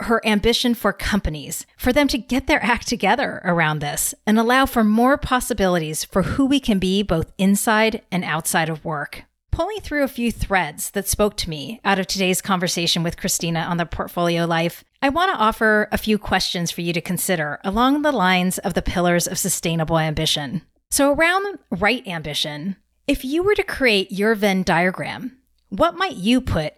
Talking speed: 190 wpm